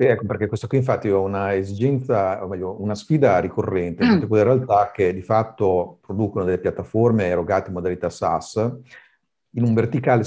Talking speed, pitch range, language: 170 wpm, 95-115 Hz, Italian